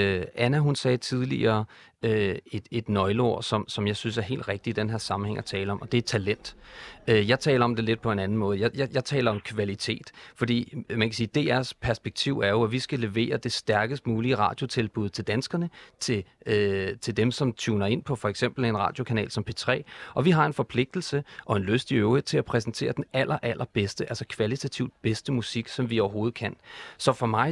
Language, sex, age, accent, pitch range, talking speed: Danish, male, 30-49, native, 110-135 Hz, 220 wpm